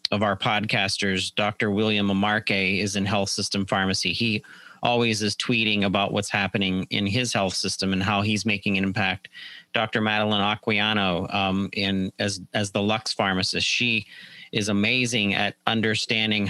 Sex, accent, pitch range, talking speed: male, American, 95-110 Hz, 155 wpm